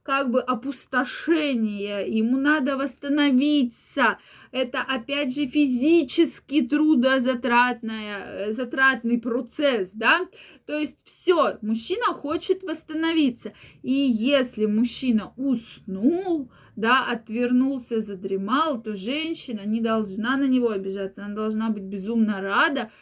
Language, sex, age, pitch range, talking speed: Russian, female, 20-39, 225-295 Hz, 100 wpm